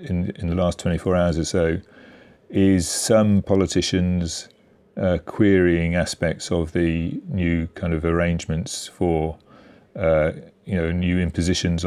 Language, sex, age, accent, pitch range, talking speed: English, male, 40-59, British, 80-95 Hz, 135 wpm